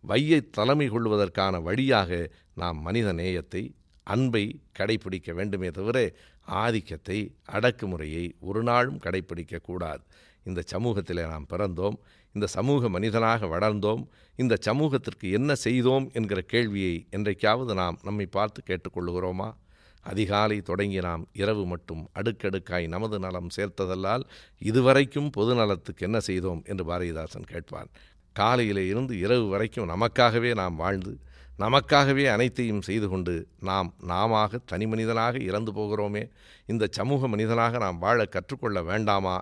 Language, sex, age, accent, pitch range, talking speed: Tamil, male, 50-69, native, 90-115 Hz, 115 wpm